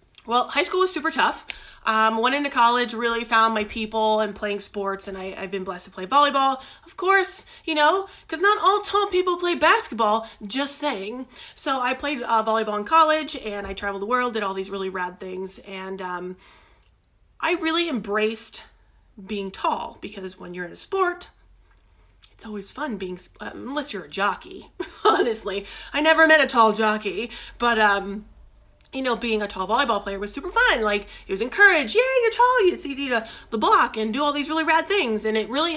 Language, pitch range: English, 205-290 Hz